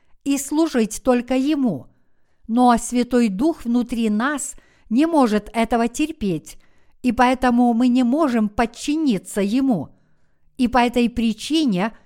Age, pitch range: 50-69, 220-270 Hz